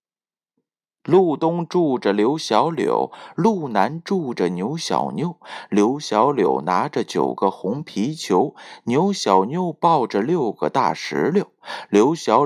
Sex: male